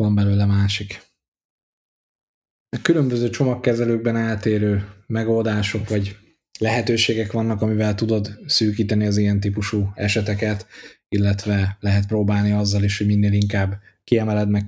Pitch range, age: 100-105 Hz, 20-39